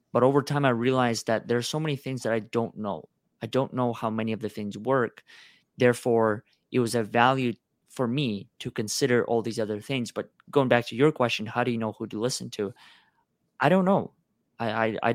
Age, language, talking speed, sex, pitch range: 20-39, English, 220 wpm, male, 110-130 Hz